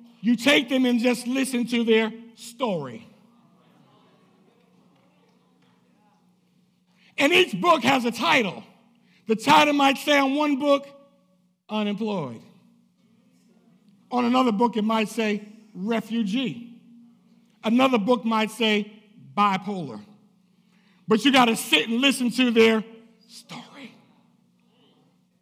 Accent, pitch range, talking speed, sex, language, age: American, 220-270 Hz, 105 wpm, male, English, 60-79